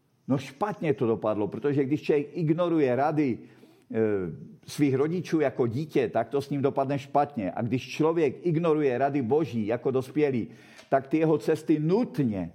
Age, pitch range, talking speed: 50-69, 125-155 Hz, 155 wpm